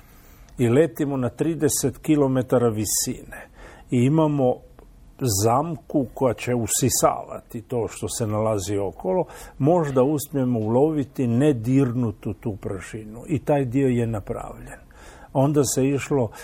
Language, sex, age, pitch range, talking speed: Croatian, male, 50-69, 115-140 Hz, 115 wpm